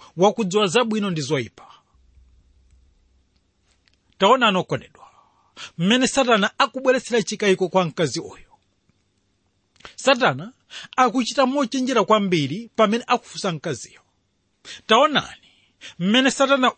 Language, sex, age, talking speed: English, male, 40-59, 80 wpm